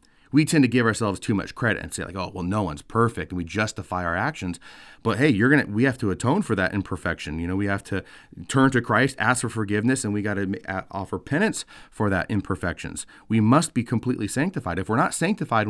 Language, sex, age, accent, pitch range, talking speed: English, male, 30-49, American, 95-125 Hz, 235 wpm